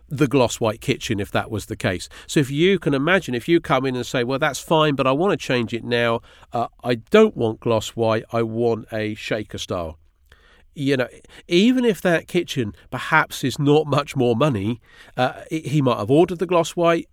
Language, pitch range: English, 115-150 Hz